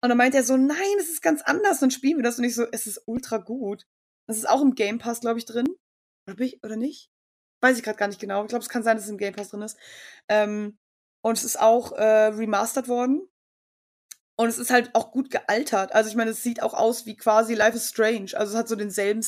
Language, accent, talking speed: German, German, 255 wpm